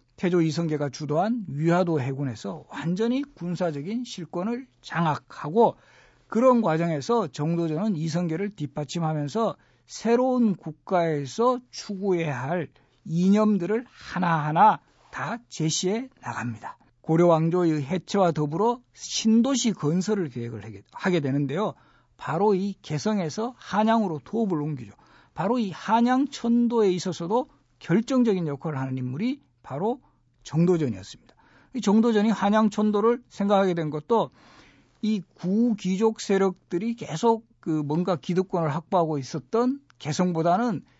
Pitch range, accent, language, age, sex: 160-225 Hz, native, Korean, 50-69, male